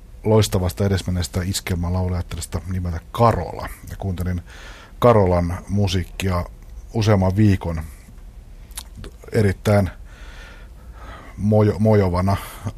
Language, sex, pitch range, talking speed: Finnish, male, 85-100 Hz, 60 wpm